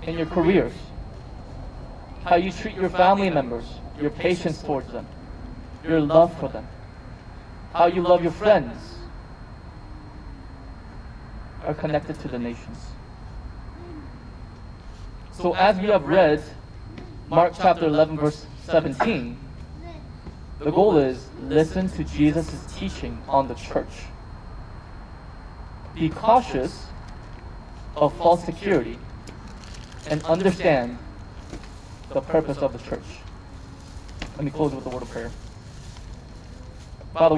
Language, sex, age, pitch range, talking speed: English, male, 20-39, 105-160 Hz, 110 wpm